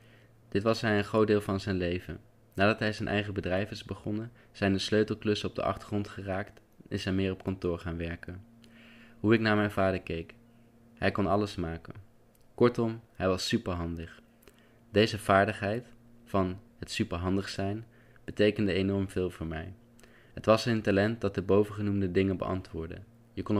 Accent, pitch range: Dutch, 95-115 Hz